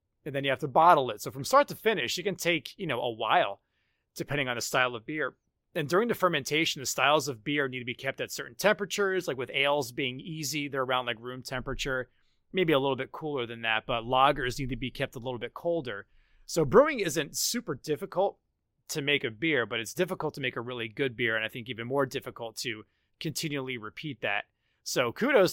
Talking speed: 230 wpm